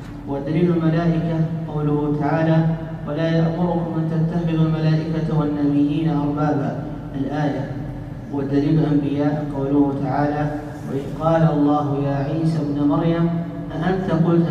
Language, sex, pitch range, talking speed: Arabic, male, 145-165 Hz, 110 wpm